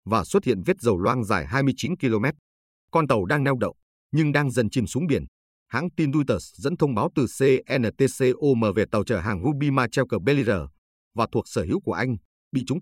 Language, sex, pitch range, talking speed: Vietnamese, male, 100-135 Hz, 205 wpm